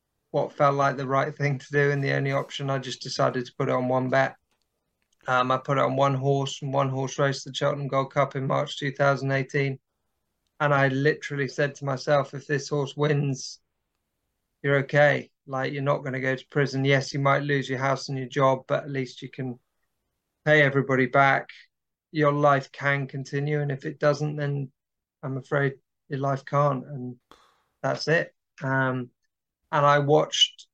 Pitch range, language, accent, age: 130-145 Hz, English, British, 30-49